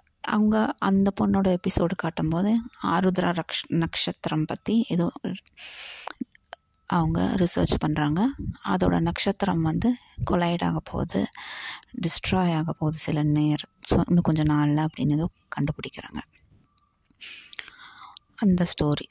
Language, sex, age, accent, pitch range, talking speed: Tamil, female, 20-39, native, 160-210 Hz, 90 wpm